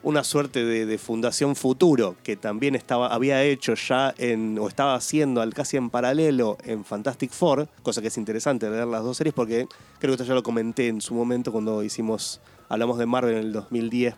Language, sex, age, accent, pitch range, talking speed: Spanish, male, 20-39, Argentinian, 110-135 Hz, 205 wpm